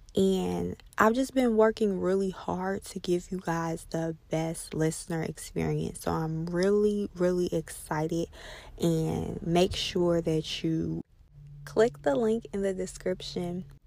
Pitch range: 160-195 Hz